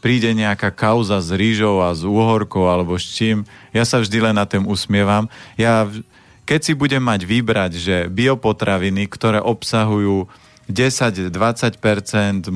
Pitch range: 95-115 Hz